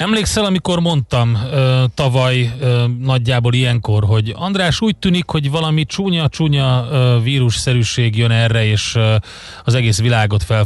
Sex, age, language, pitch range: male, 30-49, Hungarian, 110-130 Hz